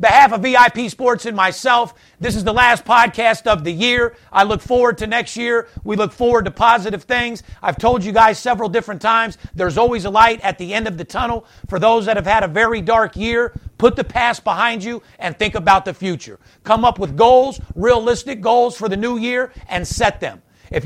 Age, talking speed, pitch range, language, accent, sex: 50-69, 220 wpm, 195-240 Hz, English, American, male